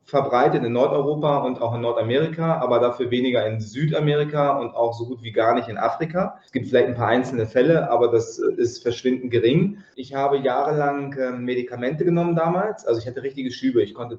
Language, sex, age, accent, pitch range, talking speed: German, male, 20-39, German, 120-150 Hz, 195 wpm